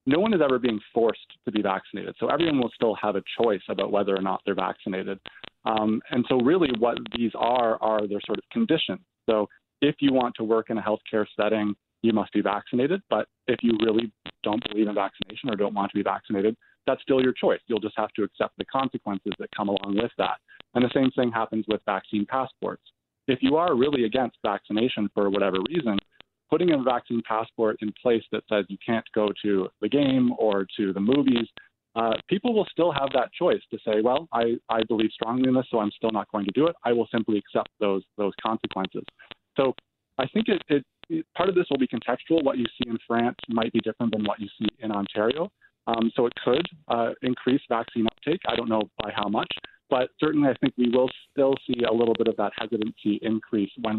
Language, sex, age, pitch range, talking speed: English, male, 20-39, 105-125 Hz, 220 wpm